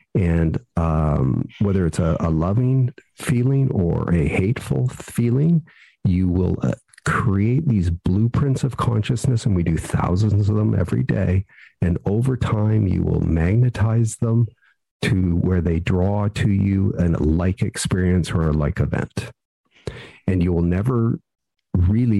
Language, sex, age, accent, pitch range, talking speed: English, male, 50-69, American, 90-120 Hz, 145 wpm